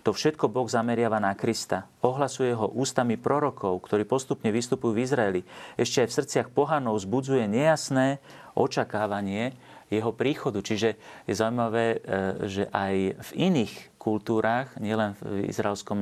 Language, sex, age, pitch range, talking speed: Slovak, male, 40-59, 90-110 Hz, 135 wpm